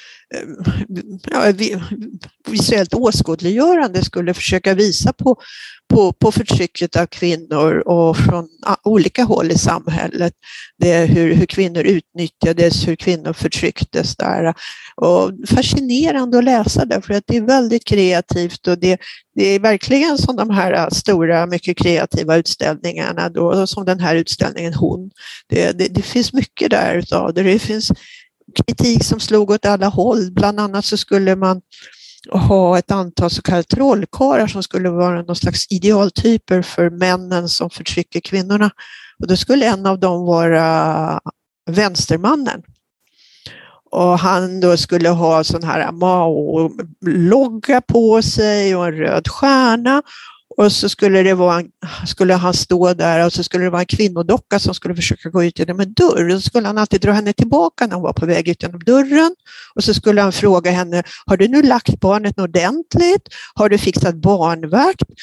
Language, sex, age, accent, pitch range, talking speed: Swedish, female, 50-69, native, 175-210 Hz, 155 wpm